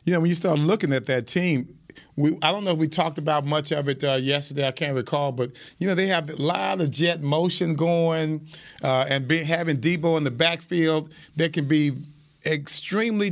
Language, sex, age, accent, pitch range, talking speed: English, male, 40-59, American, 140-170 Hz, 205 wpm